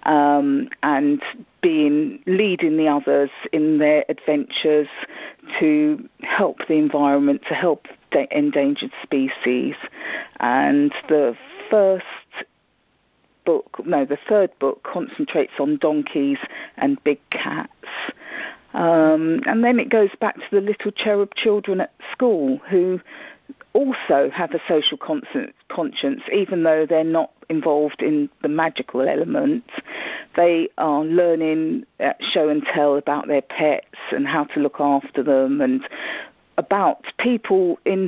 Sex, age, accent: female, 50-69, British